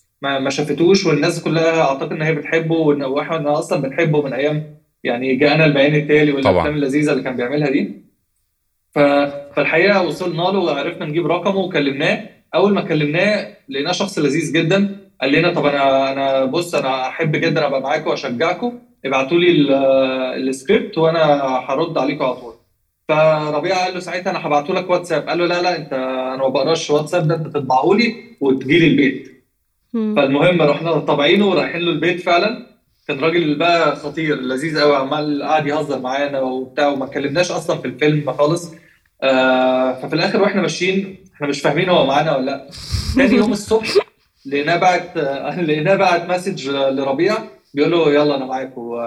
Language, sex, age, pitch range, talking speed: Arabic, male, 20-39, 135-175 Hz, 165 wpm